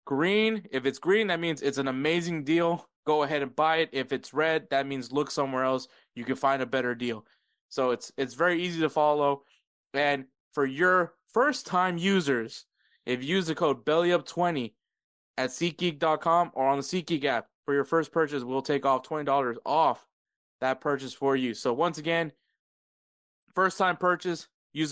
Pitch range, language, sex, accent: 130-160 Hz, English, male, American